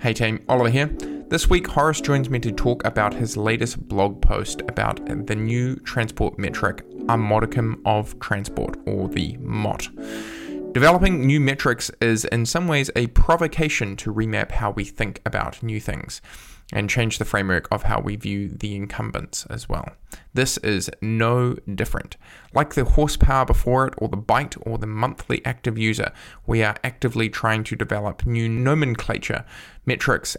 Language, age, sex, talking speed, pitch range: English, 10-29, male, 165 wpm, 105-125 Hz